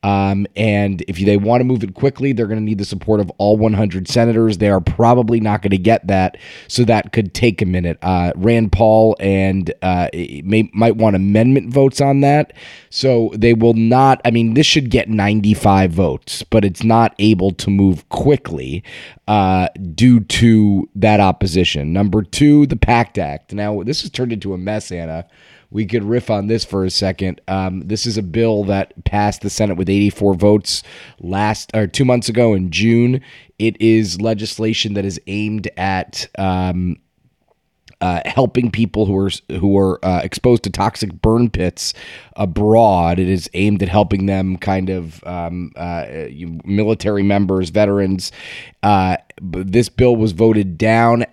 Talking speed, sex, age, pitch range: 175 wpm, male, 30-49, 95-115 Hz